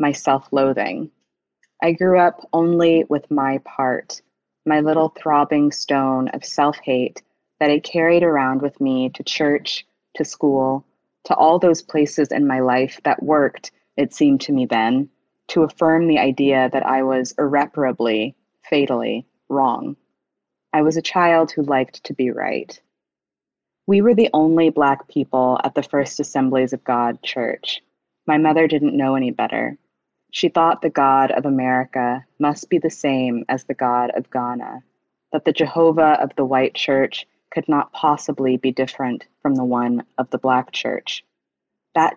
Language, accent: English, American